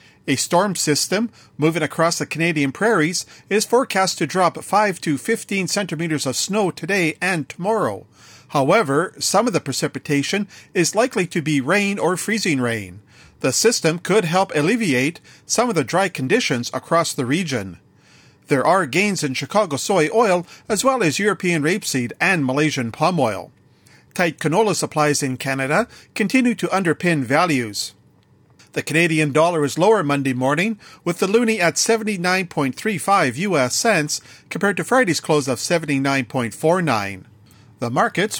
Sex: male